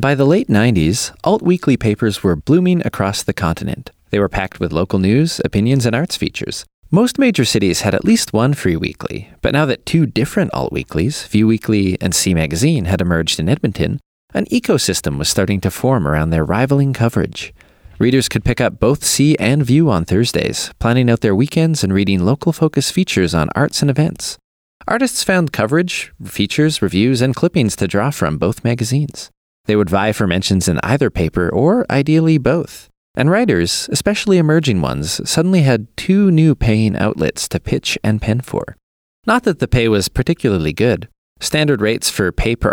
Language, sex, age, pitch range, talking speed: English, male, 30-49, 95-150 Hz, 180 wpm